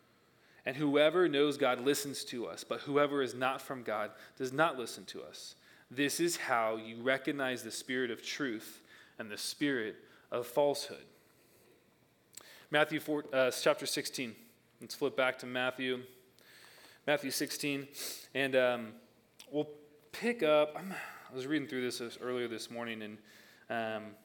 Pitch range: 120-150 Hz